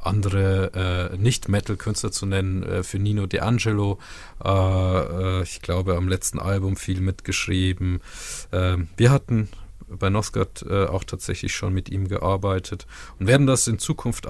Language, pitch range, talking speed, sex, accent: German, 95-110 Hz, 145 wpm, male, German